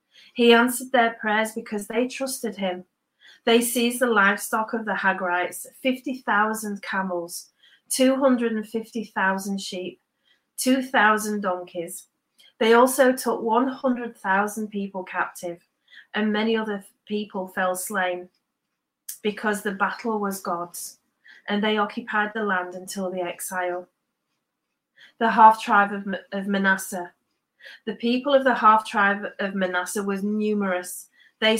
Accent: British